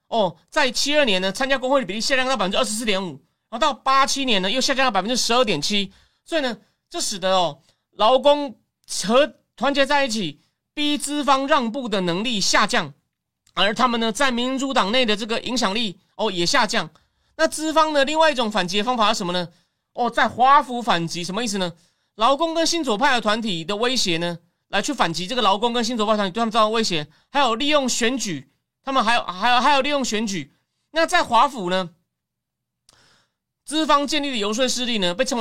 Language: Chinese